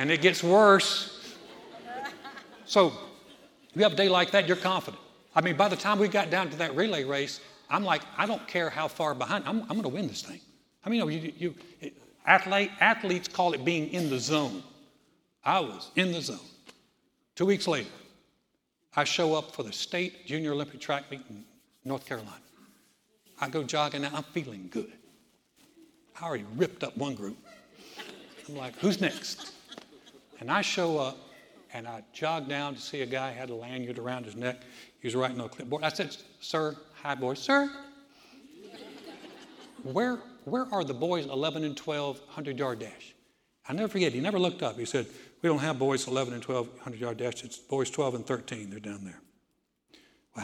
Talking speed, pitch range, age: 185 wpm, 130-185 Hz, 60-79